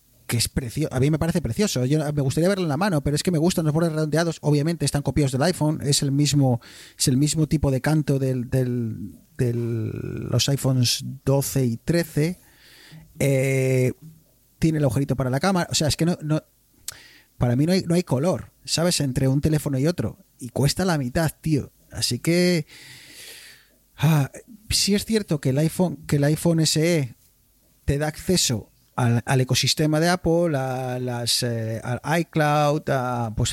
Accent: Spanish